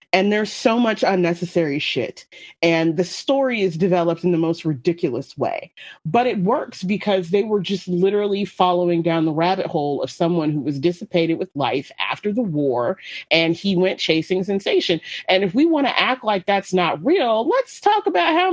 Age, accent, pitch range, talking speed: 30-49, American, 175-245 Hz, 190 wpm